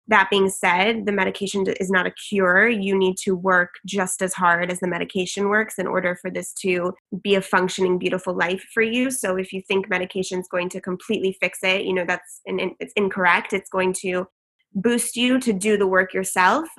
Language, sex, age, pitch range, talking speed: English, female, 20-39, 180-205 Hz, 210 wpm